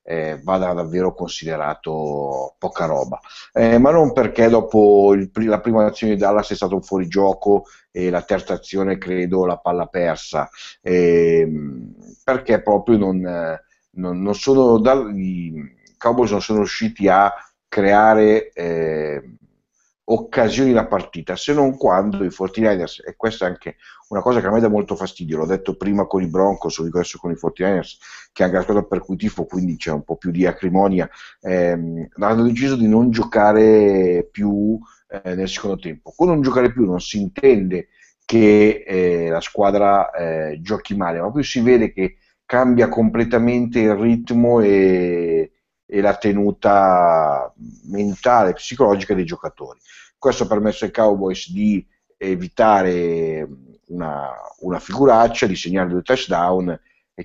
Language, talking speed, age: Italian, 160 wpm, 50-69